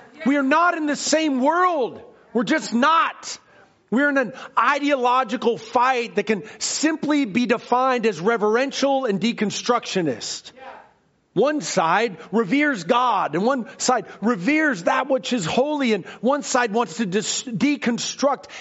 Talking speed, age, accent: 135 wpm, 40-59, American